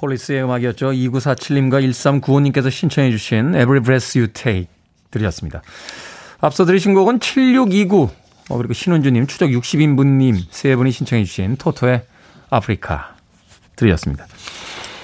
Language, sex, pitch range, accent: Korean, male, 120-185 Hz, native